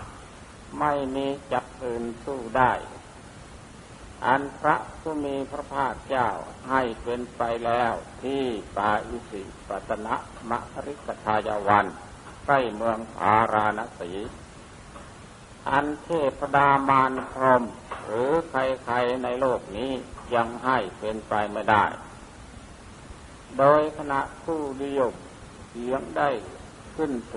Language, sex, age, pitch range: Thai, male, 60-79, 115-140 Hz